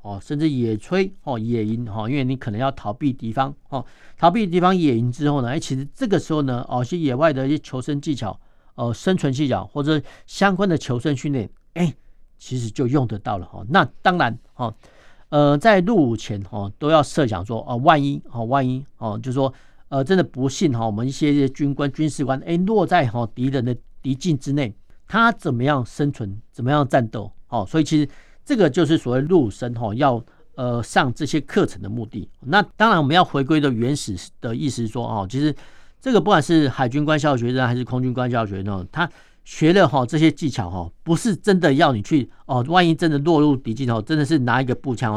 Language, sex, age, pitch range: Chinese, male, 50-69, 115-155 Hz